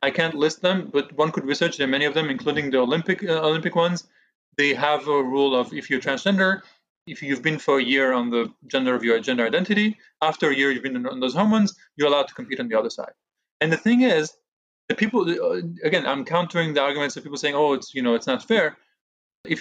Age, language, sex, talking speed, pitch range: 30-49, English, male, 235 wpm, 140-195 Hz